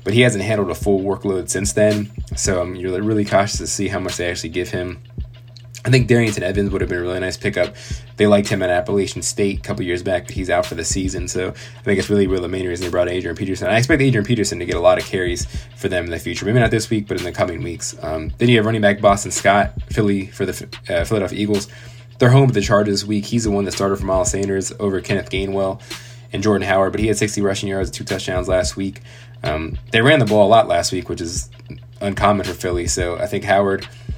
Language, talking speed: English, 260 wpm